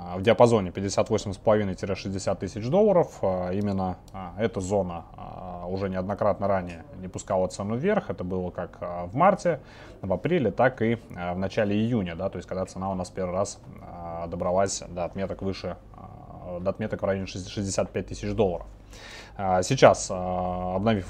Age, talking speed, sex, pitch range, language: 20-39, 130 wpm, male, 95-115 Hz, Russian